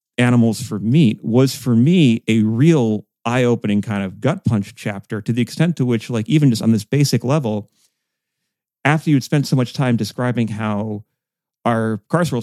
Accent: American